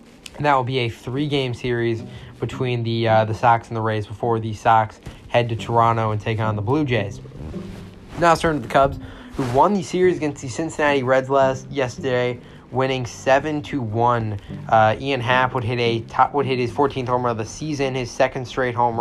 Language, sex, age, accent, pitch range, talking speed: English, male, 20-39, American, 115-130 Hz, 210 wpm